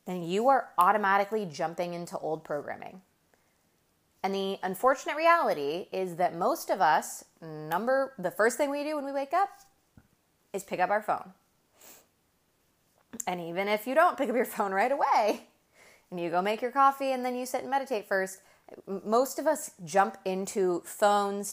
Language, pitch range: English, 175-230 Hz